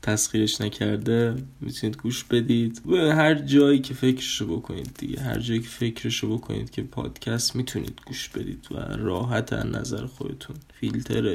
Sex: male